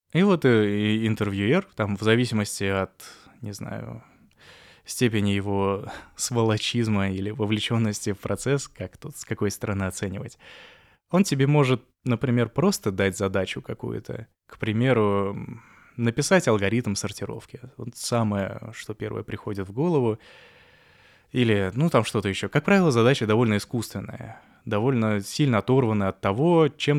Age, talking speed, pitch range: 20-39, 125 wpm, 100-130 Hz